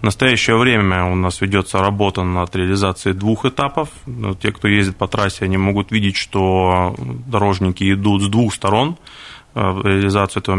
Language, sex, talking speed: Russian, male, 155 wpm